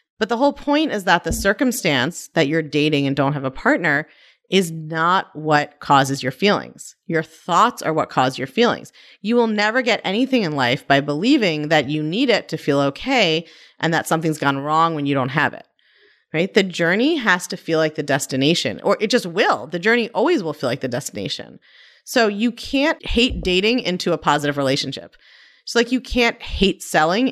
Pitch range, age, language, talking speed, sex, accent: 150-215 Hz, 30-49, English, 200 wpm, female, American